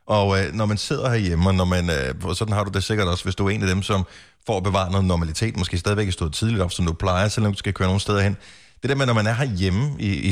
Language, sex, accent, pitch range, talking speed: Danish, male, native, 95-120 Hz, 315 wpm